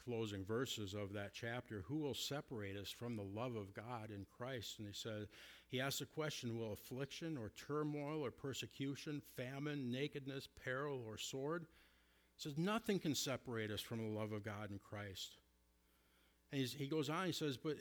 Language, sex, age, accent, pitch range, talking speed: English, male, 50-69, American, 110-150 Hz, 180 wpm